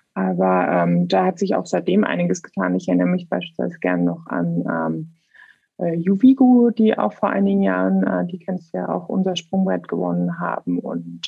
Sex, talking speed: female, 180 wpm